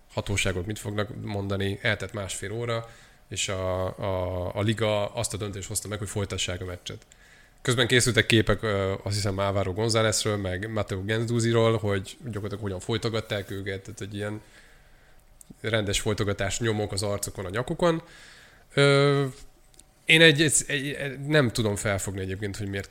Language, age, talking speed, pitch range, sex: Hungarian, 20-39, 155 wpm, 100-130 Hz, male